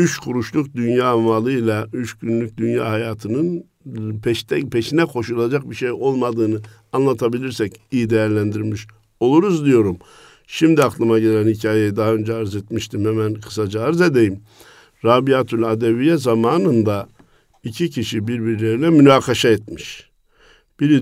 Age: 60-79